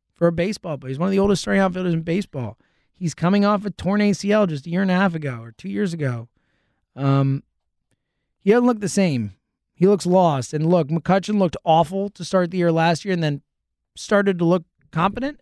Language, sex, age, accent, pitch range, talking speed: English, male, 20-39, American, 155-205 Hz, 220 wpm